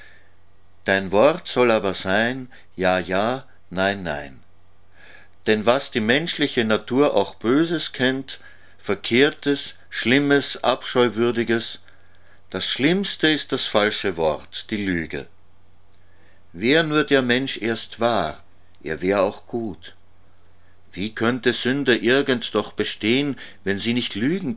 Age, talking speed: 60-79, 115 wpm